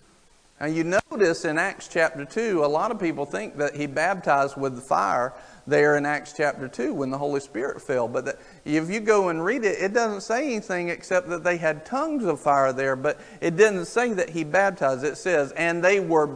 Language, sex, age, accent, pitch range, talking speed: English, male, 50-69, American, 150-215 Hz, 215 wpm